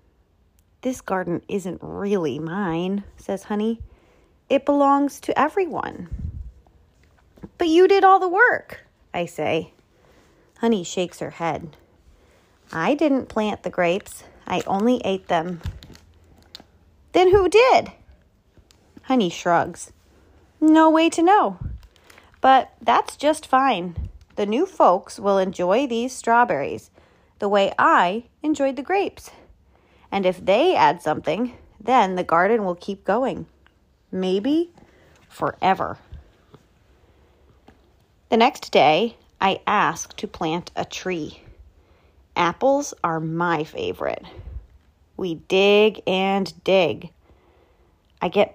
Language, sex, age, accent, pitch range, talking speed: English, female, 30-49, American, 170-270 Hz, 110 wpm